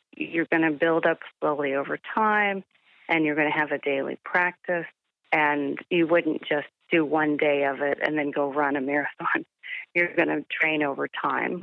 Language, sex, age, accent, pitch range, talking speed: English, female, 30-49, American, 150-180 Hz, 190 wpm